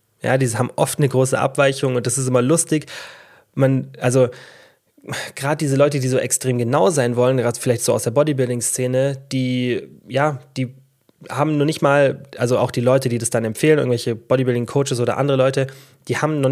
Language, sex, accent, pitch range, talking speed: German, male, German, 120-140 Hz, 190 wpm